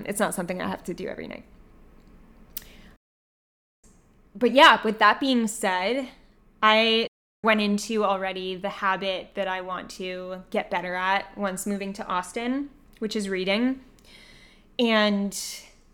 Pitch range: 190-225 Hz